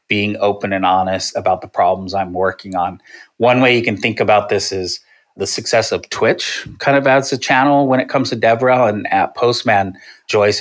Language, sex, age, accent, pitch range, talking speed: English, male, 30-49, American, 100-120 Hz, 205 wpm